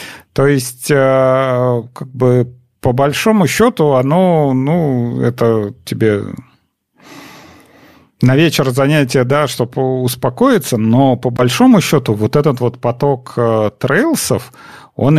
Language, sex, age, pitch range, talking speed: Russian, male, 40-59, 120-145 Hz, 105 wpm